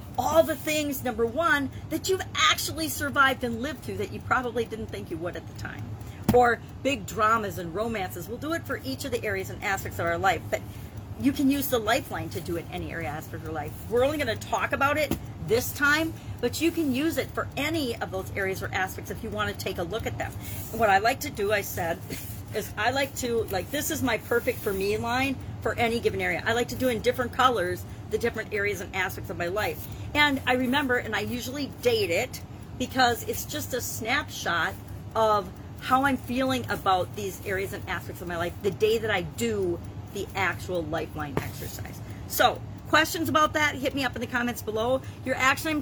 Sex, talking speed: female, 225 wpm